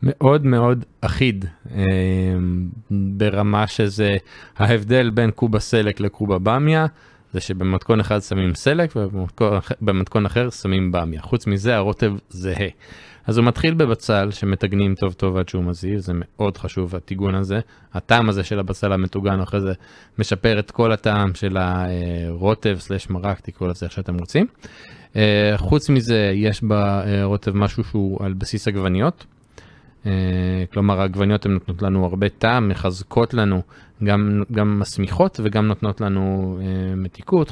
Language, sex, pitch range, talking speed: Hebrew, male, 95-115 Hz, 140 wpm